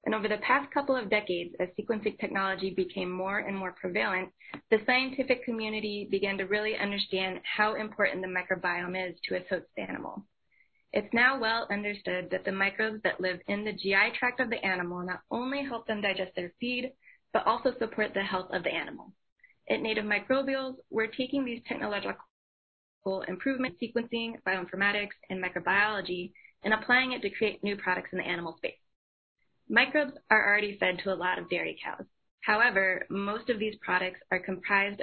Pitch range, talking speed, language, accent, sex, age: 185-230 Hz, 175 wpm, English, American, female, 20-39